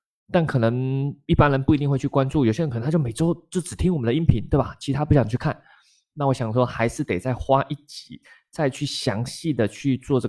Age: 20-39